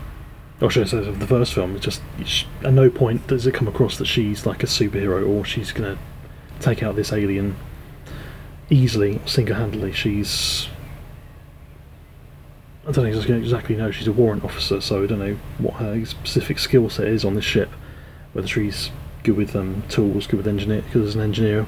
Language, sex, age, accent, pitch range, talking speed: English, male, 30-49, British, 95-115 Hz, 190 wpm